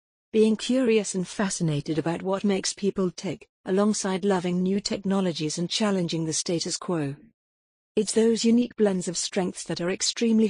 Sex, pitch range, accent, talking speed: female, 165-200 Hz, British, 155 wpm